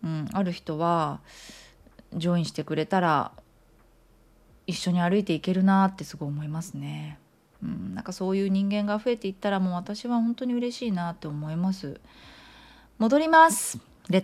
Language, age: Japanese, 20-39